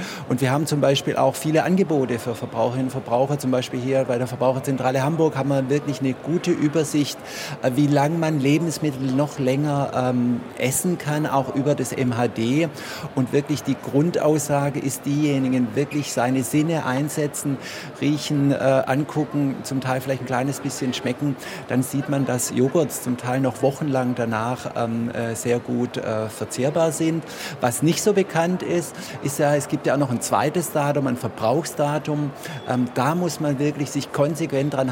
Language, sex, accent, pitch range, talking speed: German, male, German, 125-150 Hz, 170 wpm